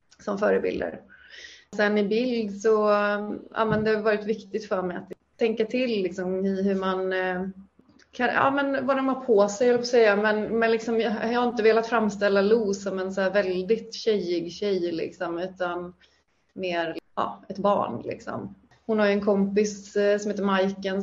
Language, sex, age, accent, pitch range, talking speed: Swedish, female, 30-49, native, 185-210 Hz, 190 wpm